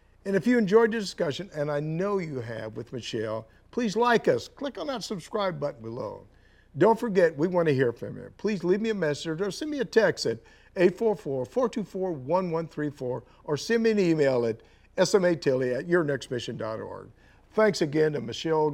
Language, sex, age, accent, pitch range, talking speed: English, male, 50-69, American, 115-185 Hz, 175 wpm